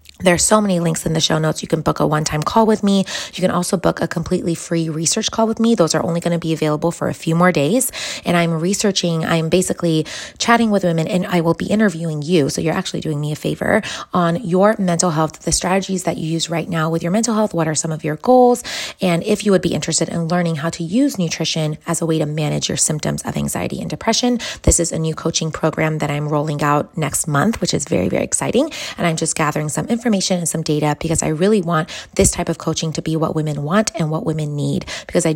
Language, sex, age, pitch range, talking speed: English, female, 20-39, 160-190 Hz, 255 wpm